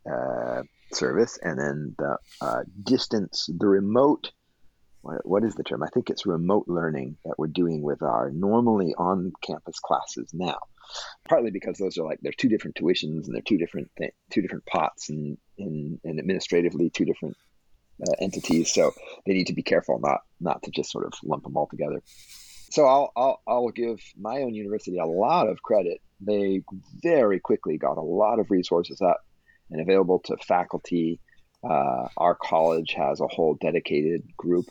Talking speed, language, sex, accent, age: 180 wpm, English, male, American, 40-59